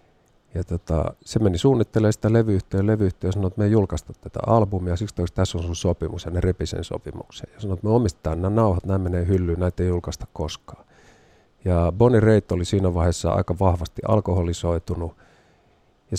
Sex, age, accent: male, 50-69, native